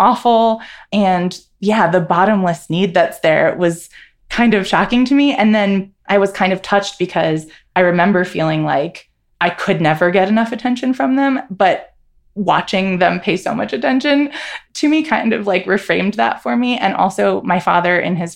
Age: 20-39